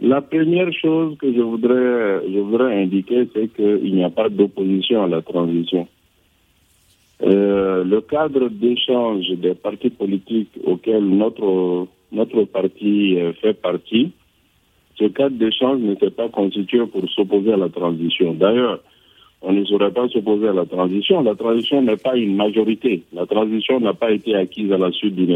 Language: French